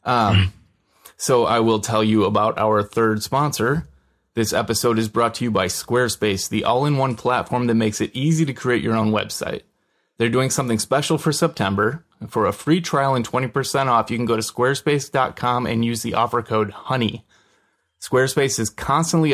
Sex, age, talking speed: male, 30-49, 175 wpm